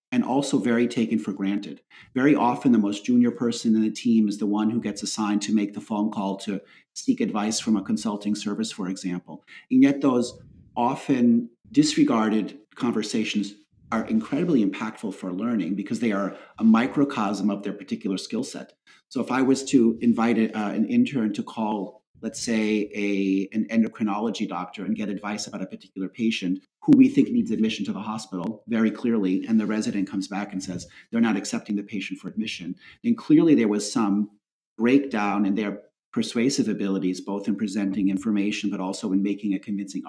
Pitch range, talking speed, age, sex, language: 100-135 Hz, 185 wpm, 40-59, male, English